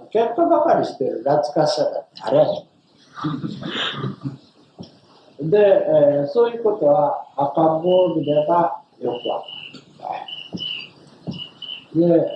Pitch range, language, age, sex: 150-195 Hz, Japanese, 60-79, male